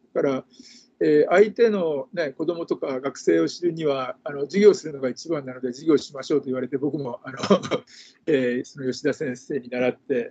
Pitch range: 140-225 Hz